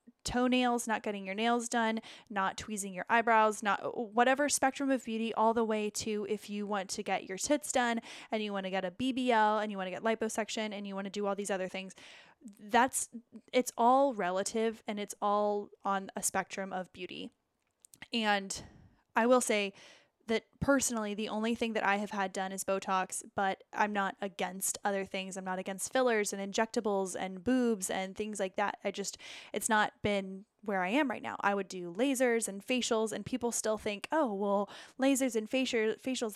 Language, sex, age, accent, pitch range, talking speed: English, female, 10-29, American, 195-235 Hz, 200 wpm